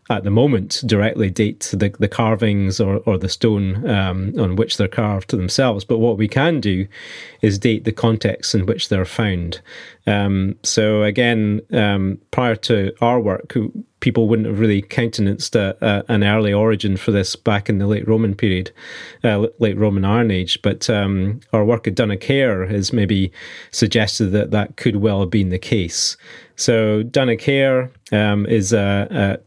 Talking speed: 175 wpm